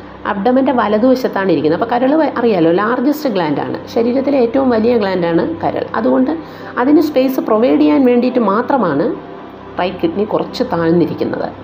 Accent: native